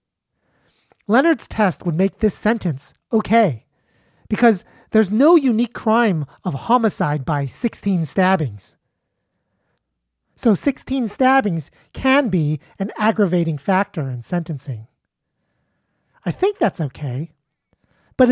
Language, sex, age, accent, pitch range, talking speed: English, male, 30-49, American, 160-225 Hz, 105 wpm